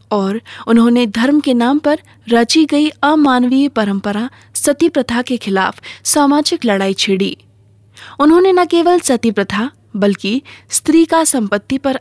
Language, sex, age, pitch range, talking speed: Hindi, female, 20-39, 195-280 Hz, 135 wpm